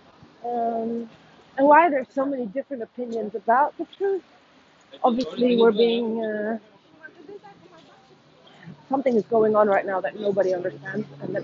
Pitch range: 200-265 Hz